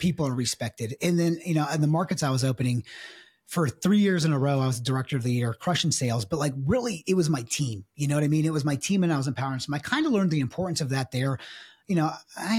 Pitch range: 135-180 Hz